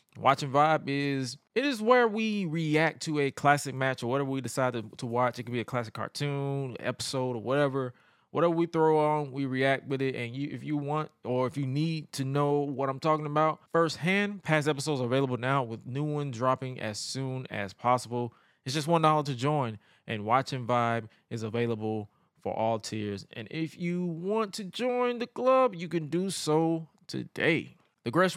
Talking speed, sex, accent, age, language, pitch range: 200 wpm, male, American, 20-39, English, 125-160 Hz